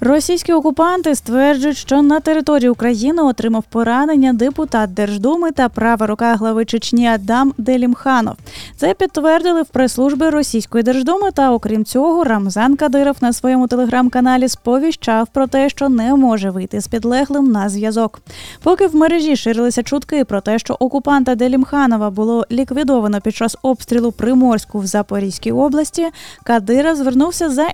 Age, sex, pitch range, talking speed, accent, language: 20-39, female, 225-285 Hz, 140 wpm, native, Ukrainian